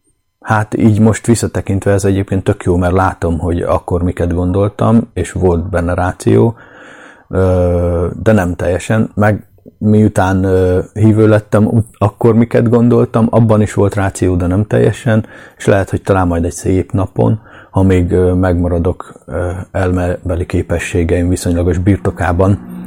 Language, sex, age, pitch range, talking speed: Hungarian, male, 30-49, 85-100 Hz, 130 wpm